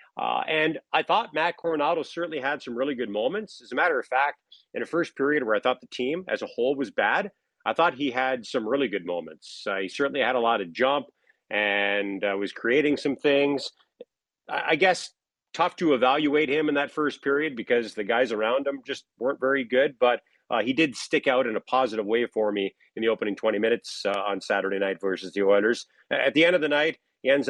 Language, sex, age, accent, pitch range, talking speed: English, male, 40-59, American, 115-155 Hz, 230 wpm